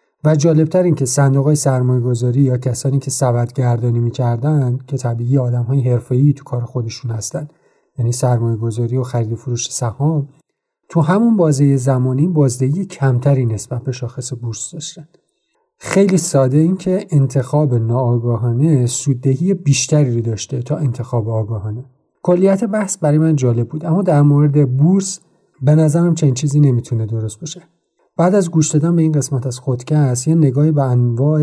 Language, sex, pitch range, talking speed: Arabic, male, 125-155 Hz, 145 wpm